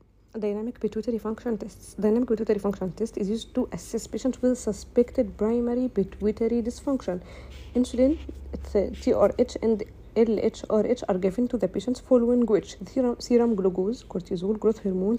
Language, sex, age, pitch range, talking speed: English, female, 50-69, 200-235 Hz, 145 wpm